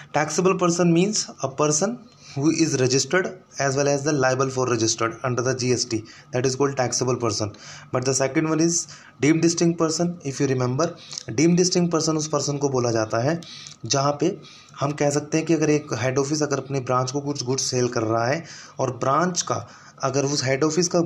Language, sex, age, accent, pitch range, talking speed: Hindi, male, 20-39, native, 130-155 Hz, 210 wpm